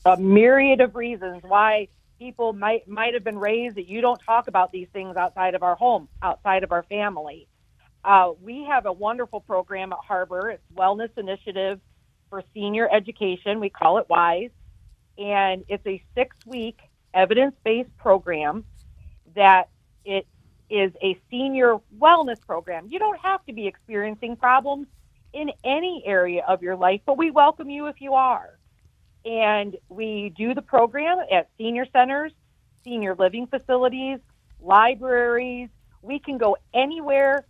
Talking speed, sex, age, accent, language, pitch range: 150 wpm, female, 40-59, American, English, 190-255 Hz